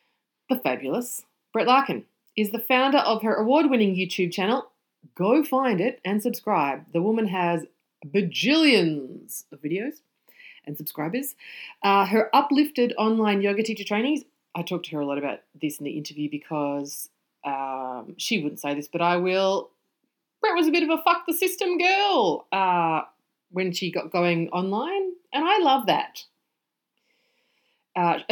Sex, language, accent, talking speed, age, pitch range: female, English, Australian, 155 wpm, 30-49, 165-245 Hz